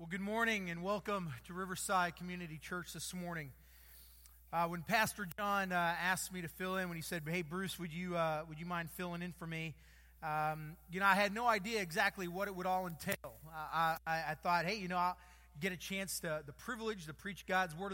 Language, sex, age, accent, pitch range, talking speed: English, male, 30-49, American, 160-210 Hz, 225 wpm